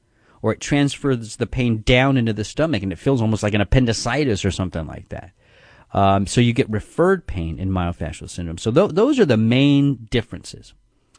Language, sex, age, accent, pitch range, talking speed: English, male, 40-59, American, 100-130 Hz, 195 wpm